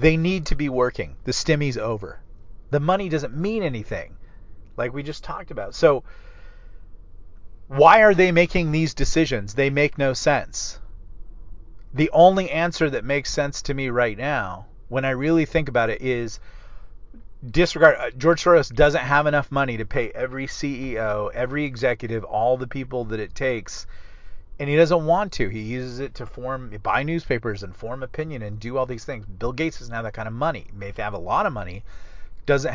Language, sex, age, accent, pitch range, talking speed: English, male, 40-59, American, 95-140 Hz, 185 wpm